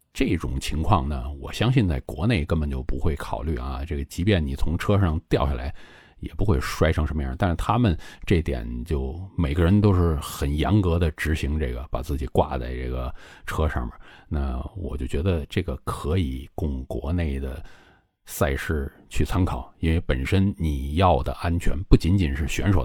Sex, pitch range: male, 70-95 Hz